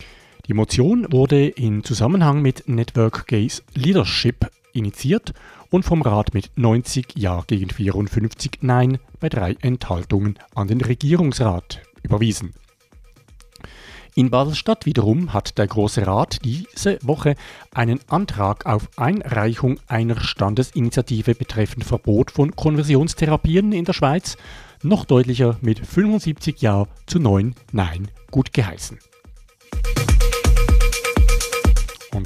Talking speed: 110 wpm